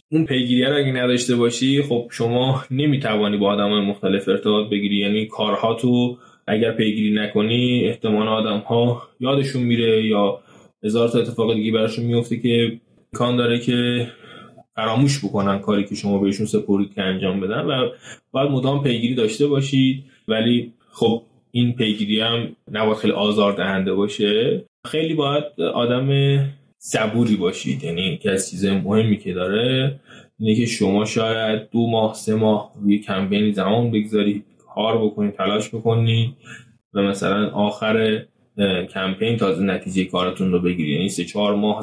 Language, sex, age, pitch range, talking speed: Persian, male, 20-39, 105-120 Hz, 150 wpm